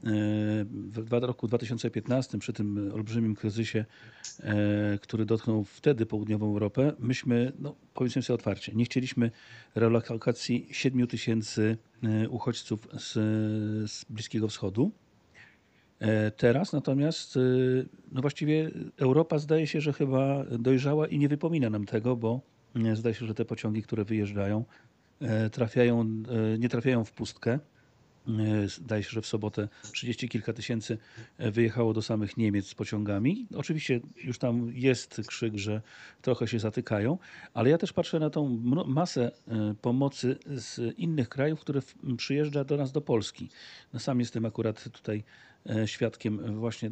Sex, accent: male, native